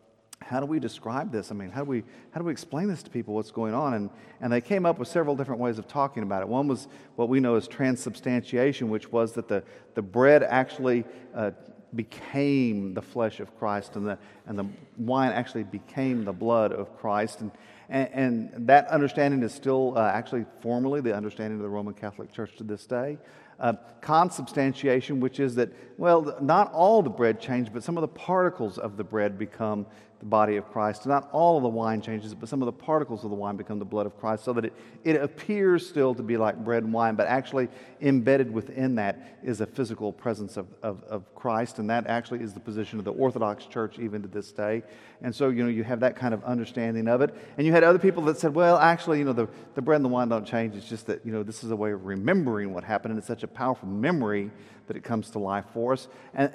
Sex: male